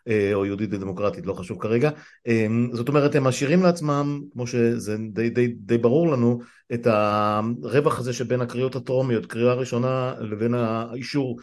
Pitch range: 110-145 Hz